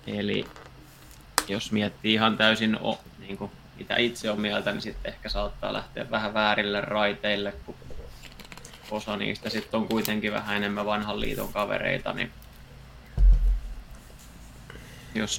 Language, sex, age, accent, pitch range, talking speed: Finnish, male, 20-39, native, 100-110 Hz, 130 wpm